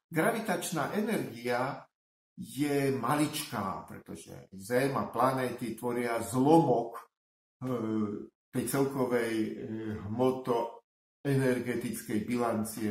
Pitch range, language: 115-170 Hz, Slovak